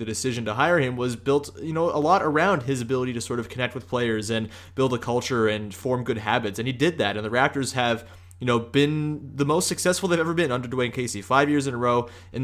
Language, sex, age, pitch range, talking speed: English, male, 20-39, 115-145 Hz, 260 wpm